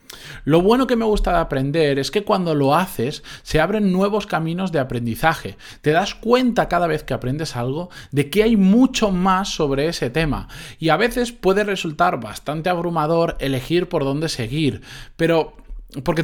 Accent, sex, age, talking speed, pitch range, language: Spanish, male, 20-39, 175 wpm, 130-185 Hz, Spanish